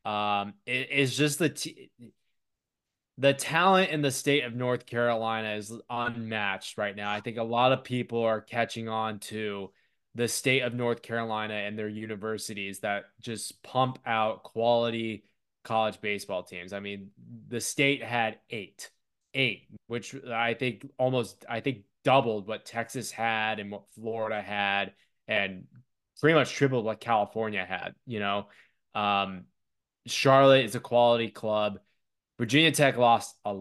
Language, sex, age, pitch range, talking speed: English, male, 20-39, 105-125 Hz, 150 wpm